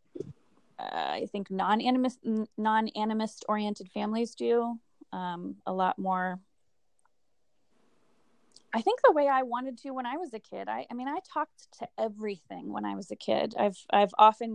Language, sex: English, female